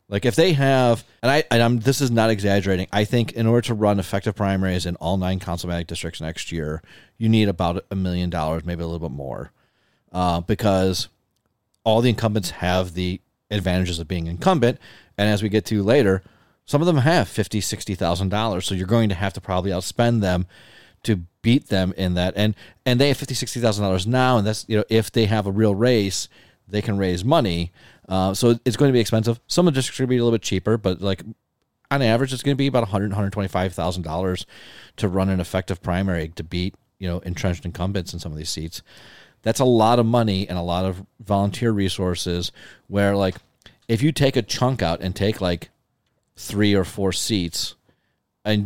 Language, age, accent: English, 30-49, American